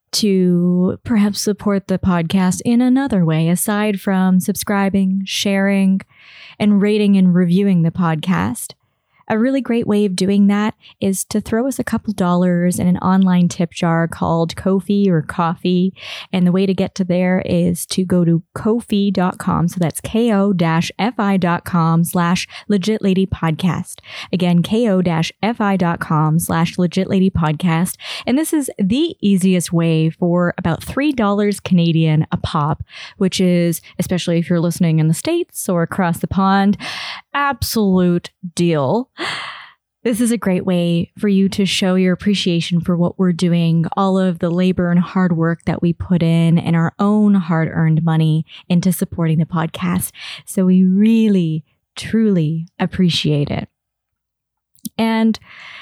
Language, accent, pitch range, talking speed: English, American, 170-205 Hz, 145 wpm